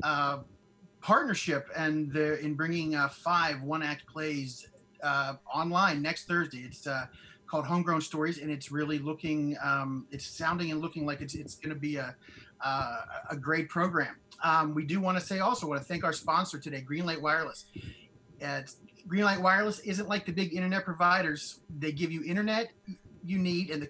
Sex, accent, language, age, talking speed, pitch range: male, American, English, 30-49, 185 wpm, 150-200 Hz